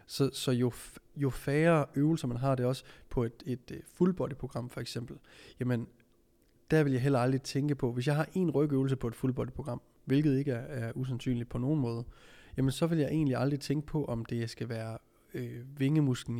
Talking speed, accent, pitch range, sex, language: 205 wpm, native, 120-140 Hz, male, Danish